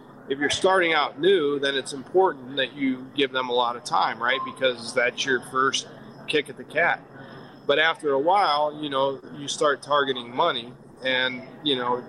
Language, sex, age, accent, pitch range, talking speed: English, male, 40-59, American, 130-150 Hz, 190 wpm